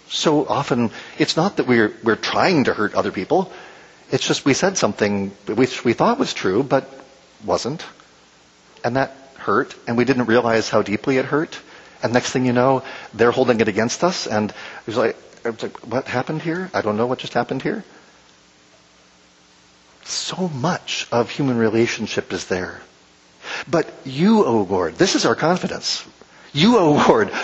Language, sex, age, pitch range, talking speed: English, male, 50-69, 105-150 Hz, 170 wpm